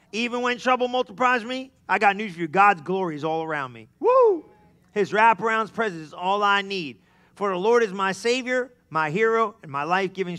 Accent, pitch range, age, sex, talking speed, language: American, 170-230 Hz, 40-59, male, 200 wpm, English